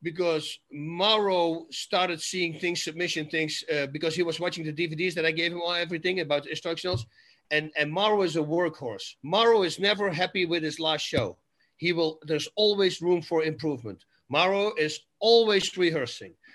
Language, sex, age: English, male, 50-69